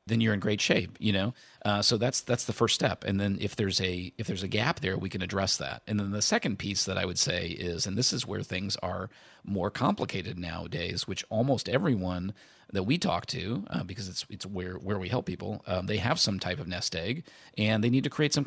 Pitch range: 95-115 Hz